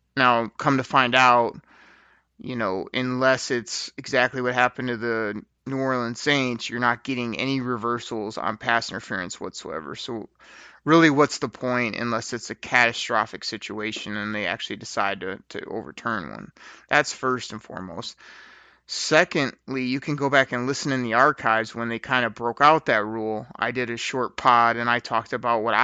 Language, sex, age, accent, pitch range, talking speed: English, male, 30-49, American, 120-150 Hz, 175 wpm